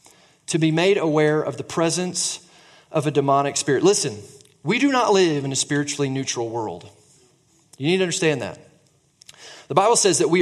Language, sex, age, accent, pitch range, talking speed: English, male, 30-49, American, 150-205 Hz, 180 wpm